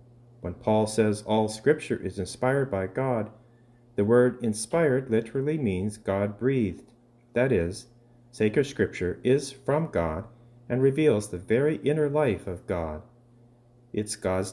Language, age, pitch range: English, 40-59, 105-125 Hz